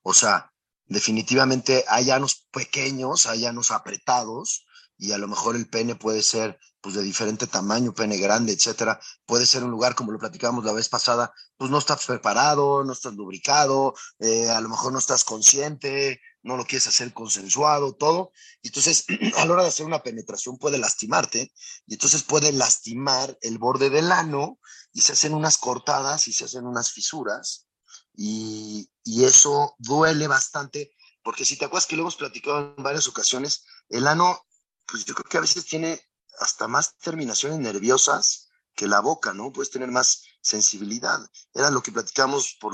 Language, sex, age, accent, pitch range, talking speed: Spanish, male, 30-49, Mexican, 115-150 Hz, 175 wpm